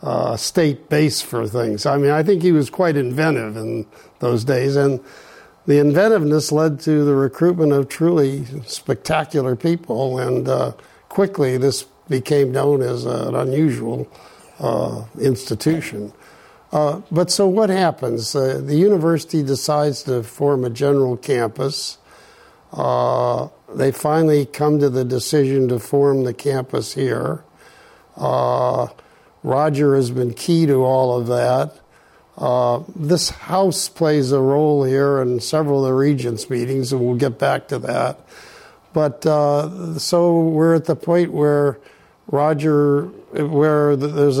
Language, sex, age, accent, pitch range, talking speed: English, male, 60-79, American, 130-155 Hz, 140 wpm